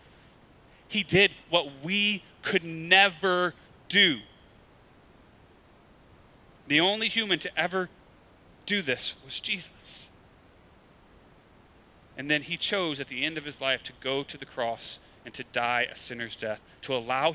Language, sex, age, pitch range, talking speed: English, male, 30-49, 125-165 Hz, 135 wpm